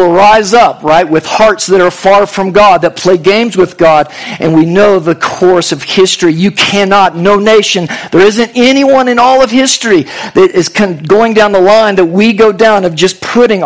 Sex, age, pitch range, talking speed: male, 50-69, 165-215 Hz, 200 wpm